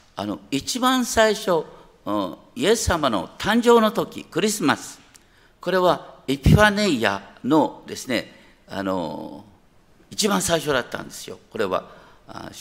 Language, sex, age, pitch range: Japanese, male, 50-69, 140-230 Hz